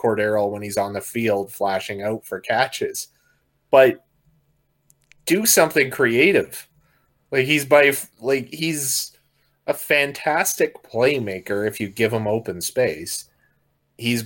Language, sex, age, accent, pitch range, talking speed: English, male, 30-49, American, 100-135 Hz, 120 wpm